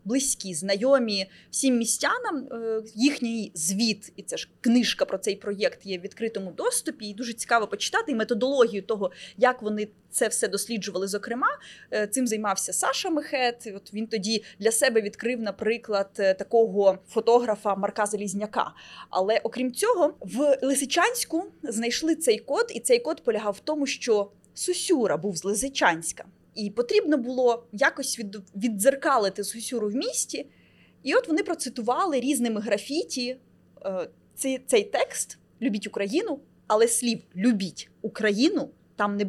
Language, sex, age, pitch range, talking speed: Ukrainian, female, 20-39, 210-275 Hz, 135 wpm